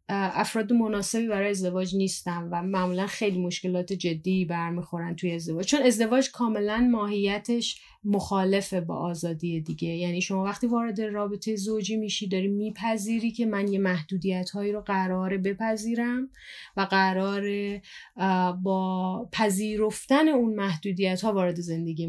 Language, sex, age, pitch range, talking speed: Persian, female, 30-49, 180-225 Hz, 125 wpm